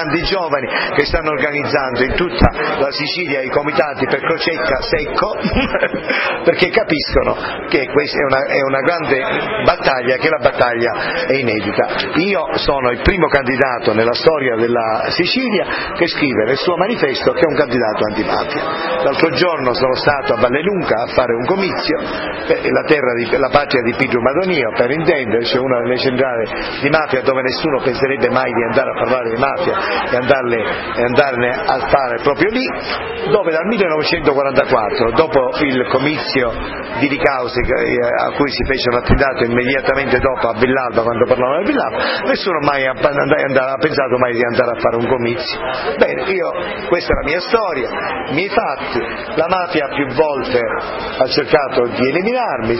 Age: 40-59